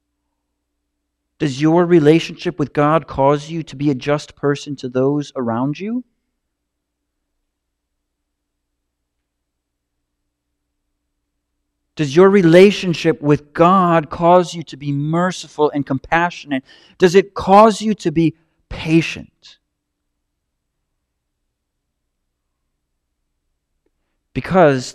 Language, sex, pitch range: English, male, 115-165 Hz